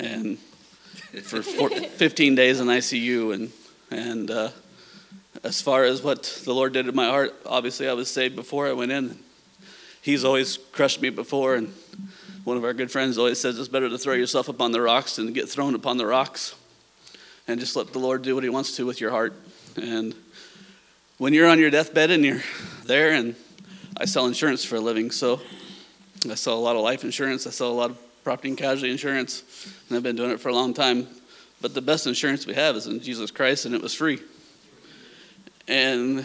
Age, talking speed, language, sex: 30-49, 205 wpm, English, male